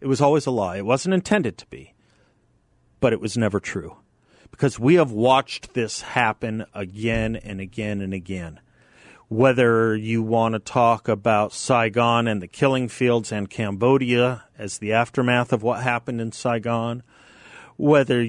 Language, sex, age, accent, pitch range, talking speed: English, male, 40-59, American, 110-135 Hz, 160 wpm